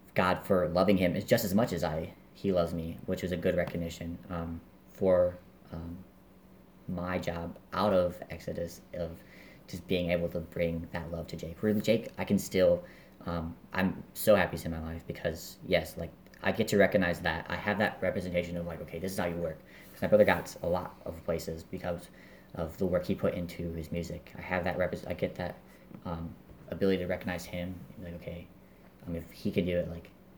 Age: 30-49